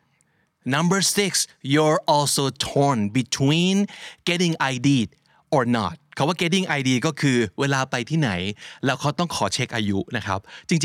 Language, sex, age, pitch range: Thai, male, 30-49, 125-175 Hz